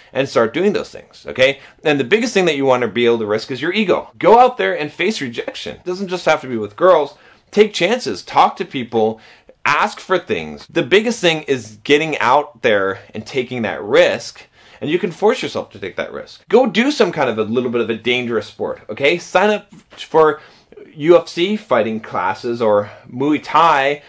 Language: English